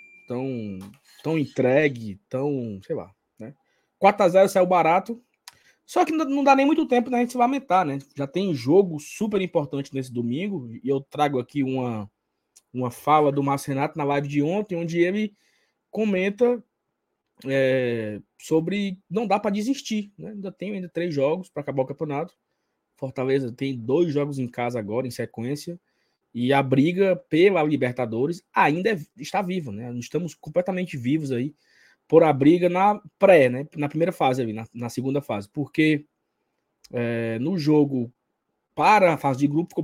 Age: 20-39